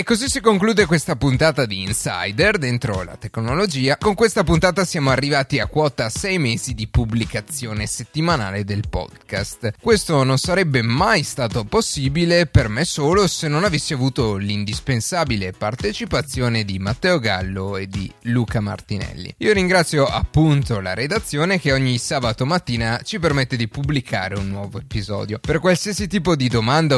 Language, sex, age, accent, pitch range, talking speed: Italian, male, 30-49, native, 110-170 Hz, 150 wpm